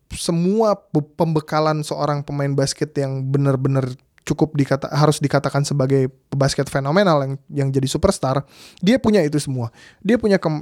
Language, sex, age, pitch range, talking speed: Indonesian, male, 20-39, 140-165 Hz, 140 wpm